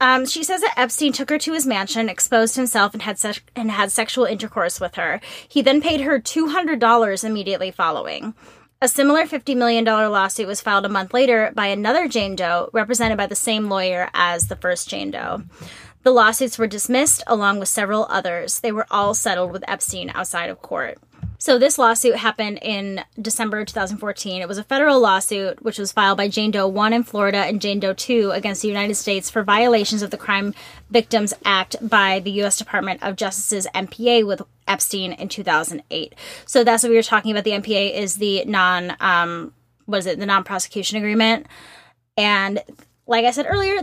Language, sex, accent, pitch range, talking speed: English, female, American, 195-240 Hz, 190 wpm